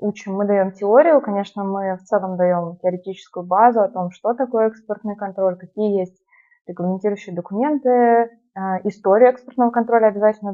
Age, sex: 20-39, female